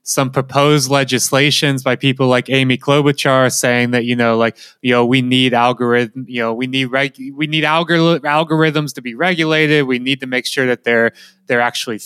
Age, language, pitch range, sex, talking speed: 20-39, English, 115-140 Hz, male, 195 wpm